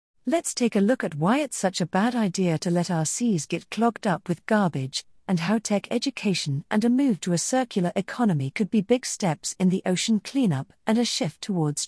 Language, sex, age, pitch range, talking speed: English, female, 50-69, 155-215 Hz, 215 wpm